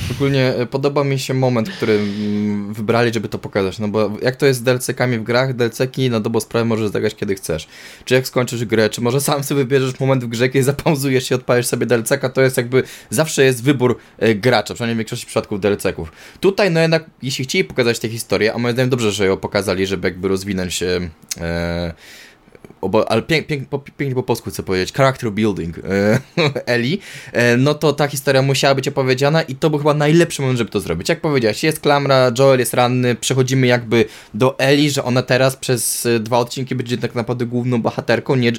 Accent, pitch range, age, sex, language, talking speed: native, 110-135 Hz, 20-39, male, Polish, 200 wpm